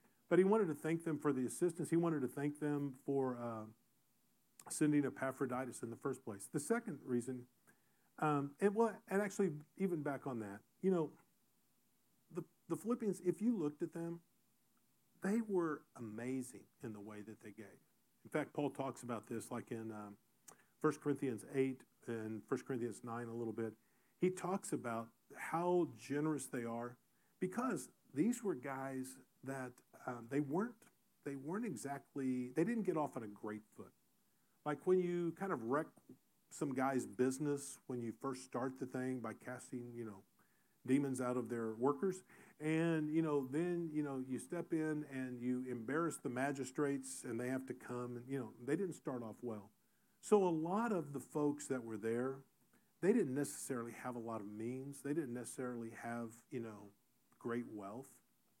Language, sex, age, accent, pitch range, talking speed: English, male, 50-69, American, 120-160 Hz, 180 wpm